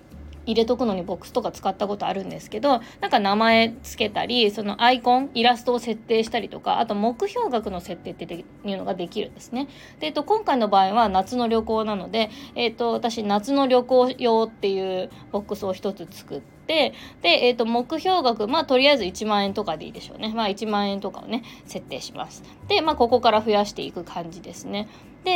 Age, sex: 20-39, female